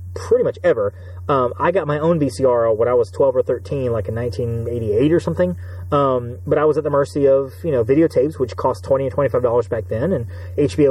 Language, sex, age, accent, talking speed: English, male, 30-49, American, 230 wpm